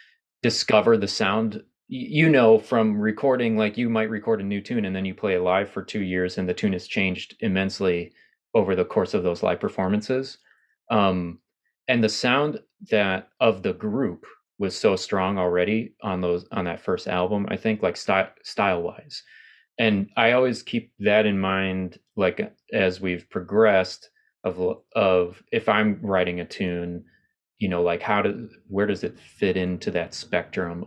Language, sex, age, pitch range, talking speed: English, male, 30-49, 90-110 Hz, 175 wpm